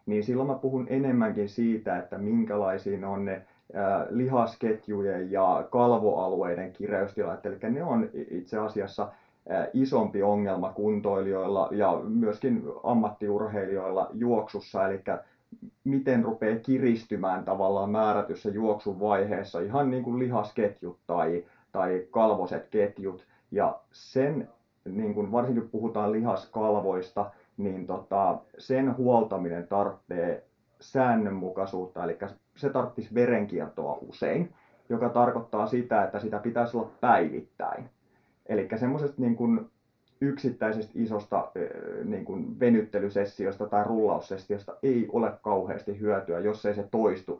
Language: Finnish